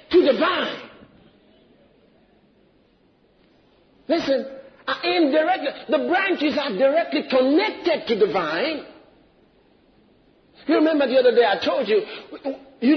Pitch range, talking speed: 280-360 Hz, 110 wpm